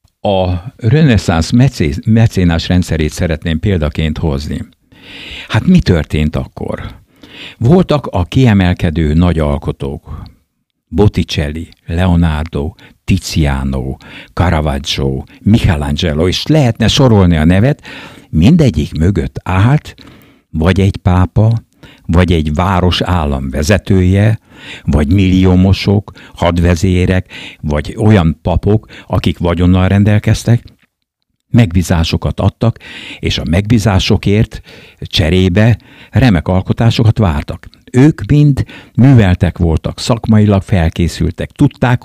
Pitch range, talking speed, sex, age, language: 85-115 Hz, 85 wpm, male, 60-79, Hungarian